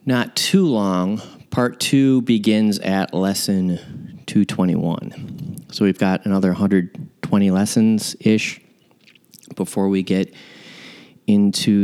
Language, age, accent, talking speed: English, 30-49, American, 95 wpm